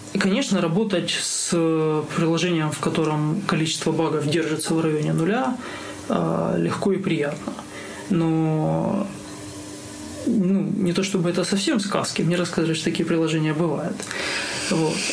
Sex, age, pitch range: male, 20-39, 155-185 Hz